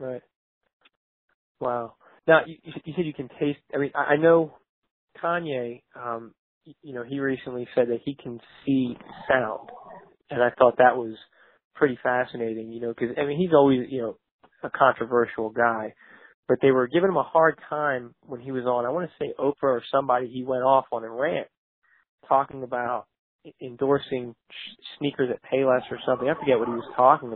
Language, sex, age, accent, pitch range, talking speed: English, male, 20-39, American, 125-160 Hz, 185 wpm